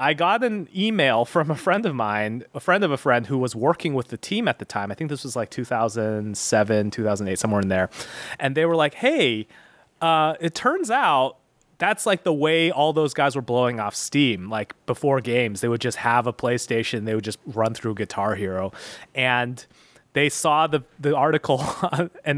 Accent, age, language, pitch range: American, 30-49, English, 120-175 Hz